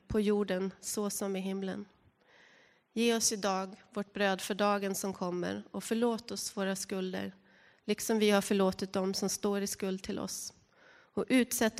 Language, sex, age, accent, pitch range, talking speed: Swedish, female, 30-49, native, 190-225 Hz, 170 wpm